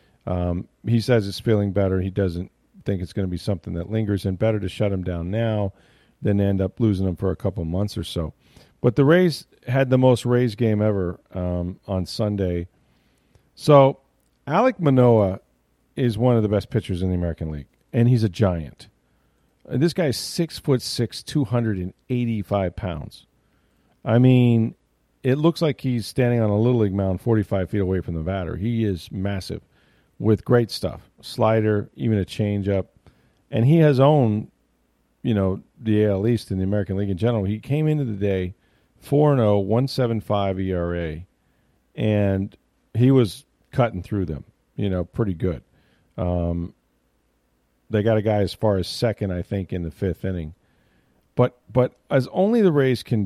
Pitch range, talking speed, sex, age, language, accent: 90-120 Hz, 185 wpm, male, 40-59, English, American